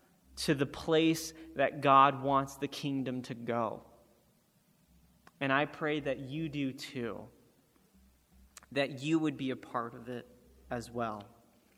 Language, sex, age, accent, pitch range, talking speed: English, male, 30-49, American, 125-150 Hz, 140 wpm